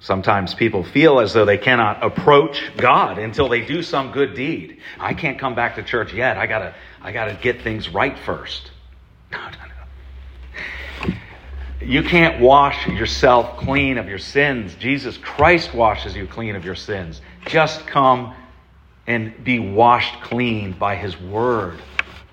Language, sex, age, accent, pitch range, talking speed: English, male, 40-59, American, 95-140 Hz, 155 wpm